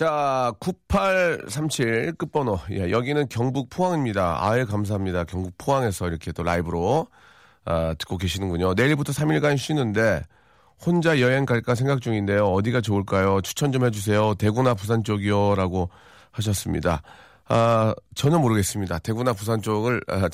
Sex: male